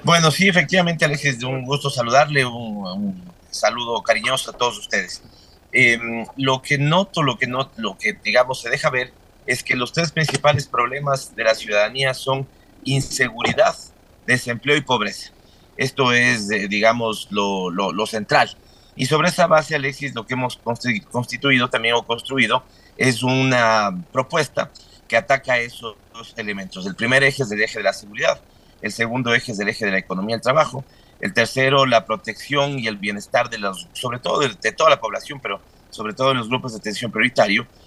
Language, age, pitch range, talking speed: Spanish, 40-59, 110-135 Hz, 180 wpm